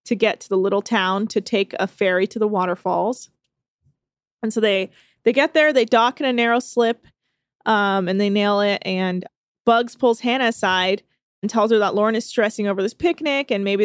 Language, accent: English, American